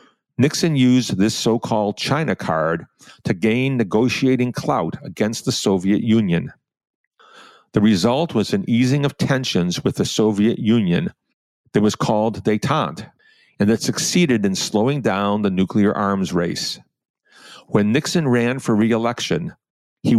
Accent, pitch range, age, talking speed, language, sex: American, 100-125 Hz, 50-69, 135 wpm, English, male